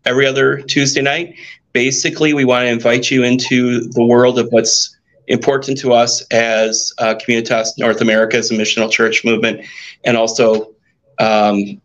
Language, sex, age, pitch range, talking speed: English, male, 30-49, 115-135 Hz, 155 wpm